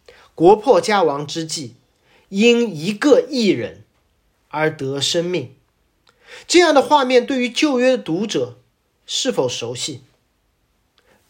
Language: Chinese